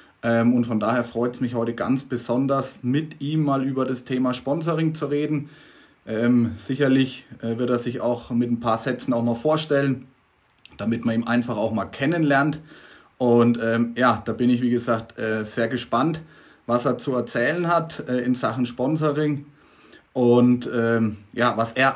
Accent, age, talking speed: German, 30-49, 180 wpm